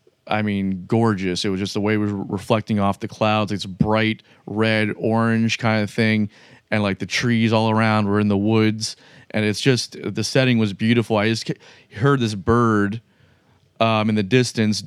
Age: 30-49